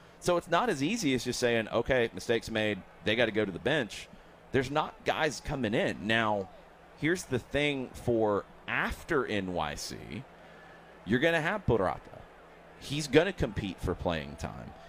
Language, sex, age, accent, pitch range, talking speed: English, male, 30-49, American, 90-125 Hz, 170 wpm